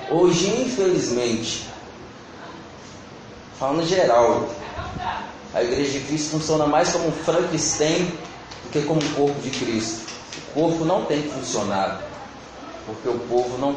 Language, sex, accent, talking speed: Portuguese, male, Brazilian, 135 wpm